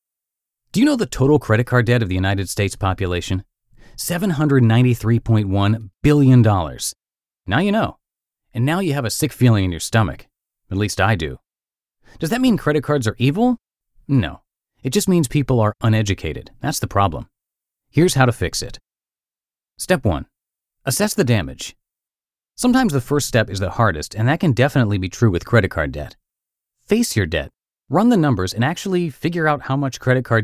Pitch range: 100-145 Hz